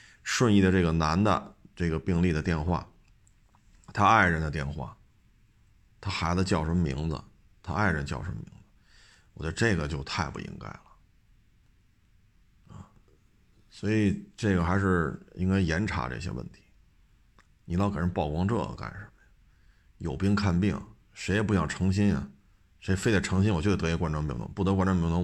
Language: Chinese